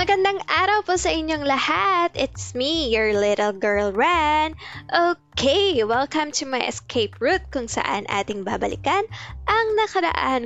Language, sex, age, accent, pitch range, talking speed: Filipino, female, 20-39, native, 220-320 Hz, 140 wpm